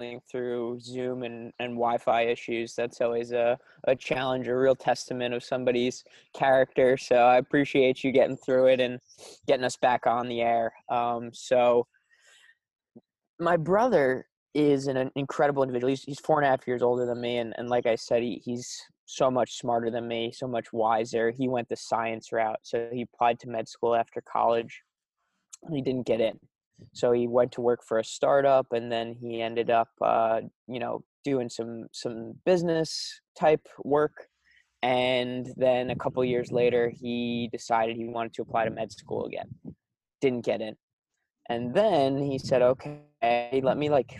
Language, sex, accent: English, male, American